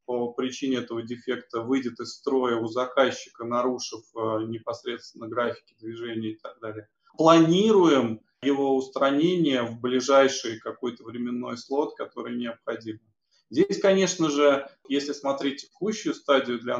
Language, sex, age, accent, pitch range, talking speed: Russian, male, 20-39, native, 125-145 Hz, 120 wpm